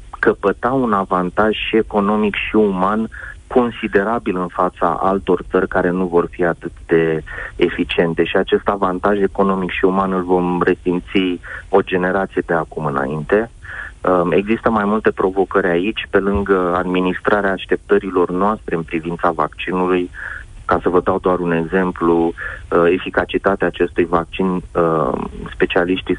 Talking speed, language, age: 130 wpm, Romanian, 30-49